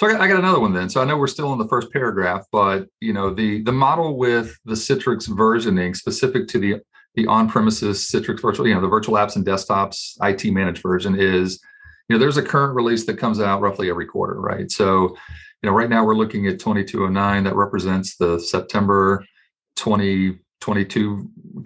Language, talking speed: English, 190 wpm